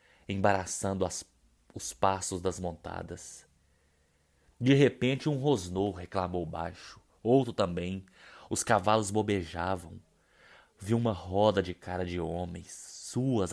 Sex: male